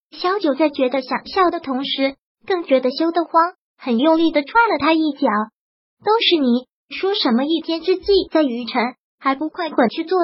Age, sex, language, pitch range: 20-39, male, Chinese, 270-340 Hz